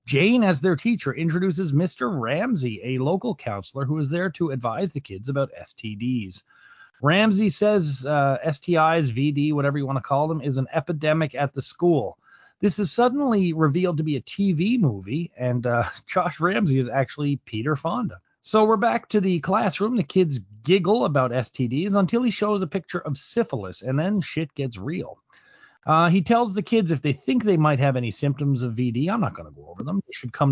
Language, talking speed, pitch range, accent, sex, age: English, 200 wpm, 130-190 Hz, American, male, 30-49